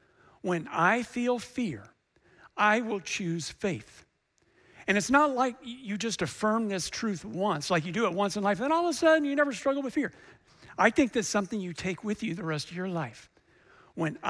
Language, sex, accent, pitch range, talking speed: English, male, American, 165-215 Hz, 205 wpm